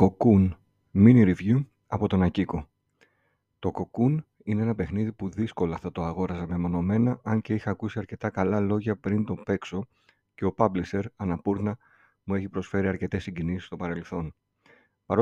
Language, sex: Greek, male